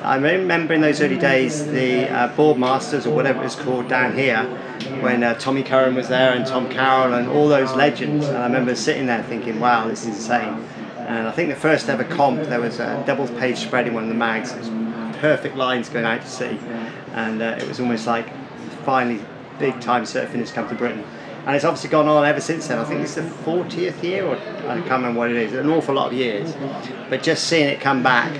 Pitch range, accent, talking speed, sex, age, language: 120-145 Hz, British, 235 wpm, male, 30-49, English